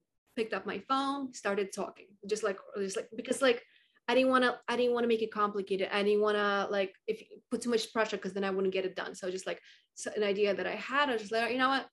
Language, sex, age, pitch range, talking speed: English, female, 20-39, 195-240 Hz, 275 wpm